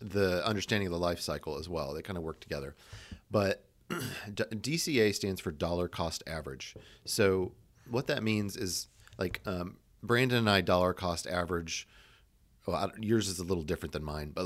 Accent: American